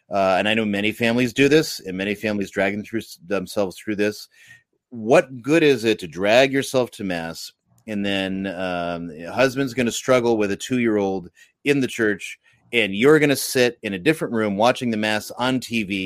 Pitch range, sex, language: 95-120 Hz, male, English